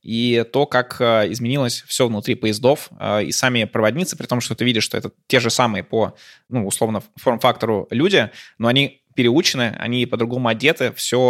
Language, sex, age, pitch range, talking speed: Russian, male, 20-39, 110-130 Hz, 170 wpm